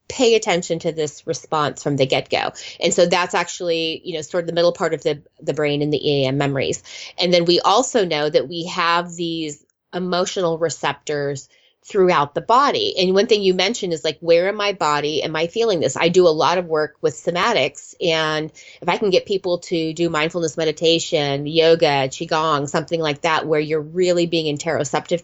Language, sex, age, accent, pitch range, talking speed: English, female, 20-39, American, 155-185 Hz, 200 wpm